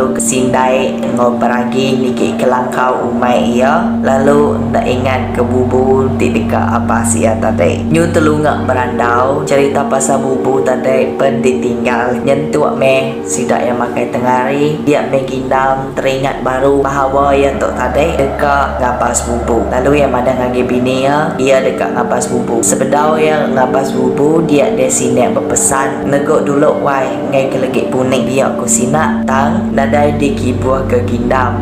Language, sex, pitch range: Malay, female, 115-135 Hz